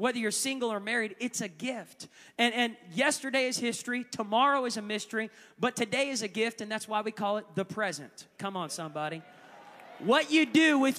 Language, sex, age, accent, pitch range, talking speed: English, male, 30-49, American, 210-275 Hz, 200 wpm